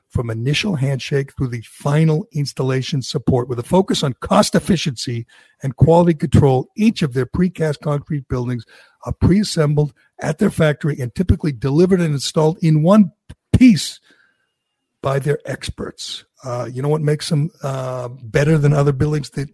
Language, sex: English, male